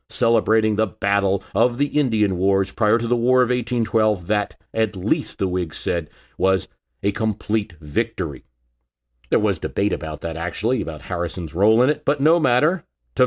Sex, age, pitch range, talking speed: male, 50-69, 90-145 Hz, 170 wpm